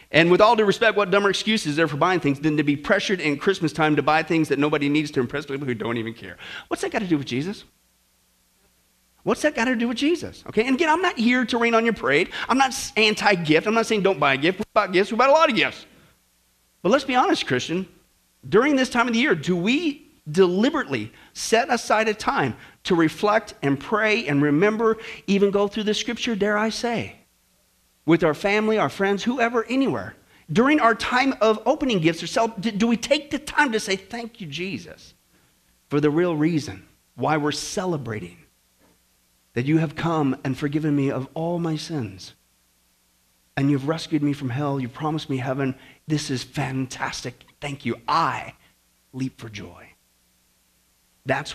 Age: 40-59